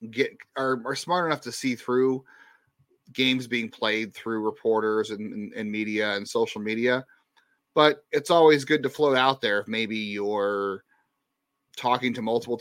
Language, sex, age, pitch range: English, male, 30-49, 110-140 Hz